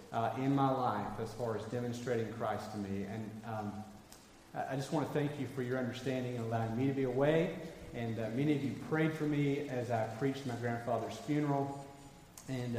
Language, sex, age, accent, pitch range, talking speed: English, male, 40-59, American, 115-160 Hz, 205 wpm